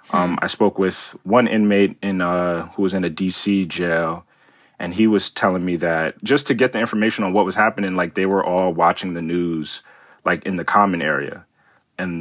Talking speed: 205 wpm